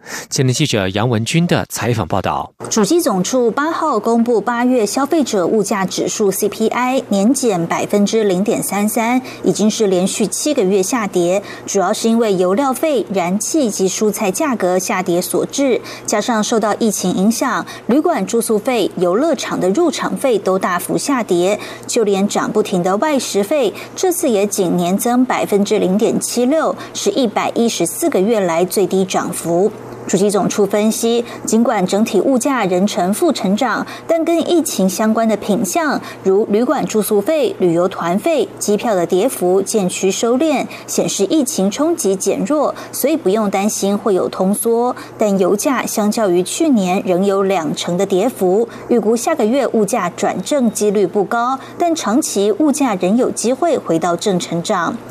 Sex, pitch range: female, 190-250 Hz